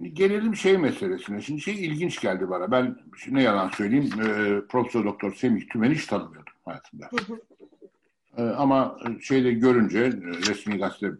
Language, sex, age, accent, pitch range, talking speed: Turkish, male, 60-79, native, 100-135 Hz, 145 wpm